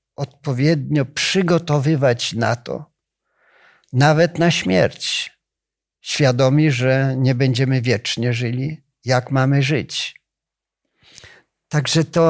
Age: 50-69